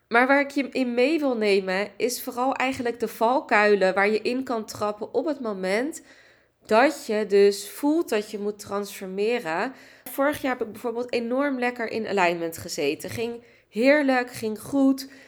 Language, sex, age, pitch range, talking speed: Dutch, female, 20-39, 205-255 Hz, 170 wpm